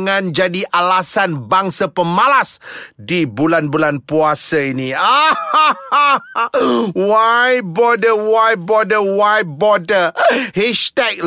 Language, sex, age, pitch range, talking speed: Malay, male, 30-49, 190-265 Hz, 85 wpm